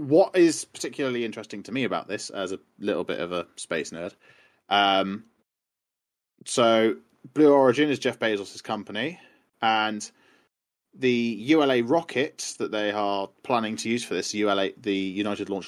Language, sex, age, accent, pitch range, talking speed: English, male, 20-39, British, 105-145 Hz, 150 wpm